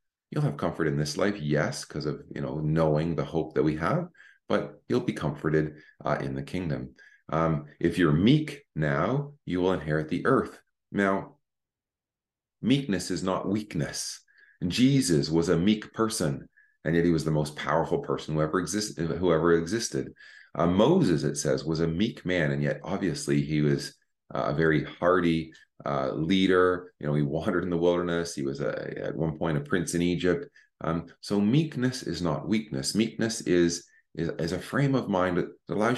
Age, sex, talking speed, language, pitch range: 30-49, male, 185 wpm, English, 75-105 Hz